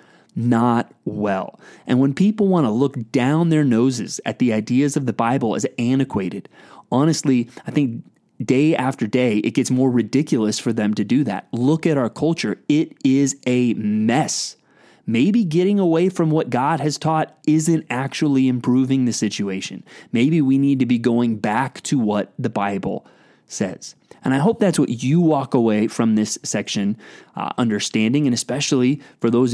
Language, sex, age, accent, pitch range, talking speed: English, male, 30-49, American, 115-145 Hz, 170 wpm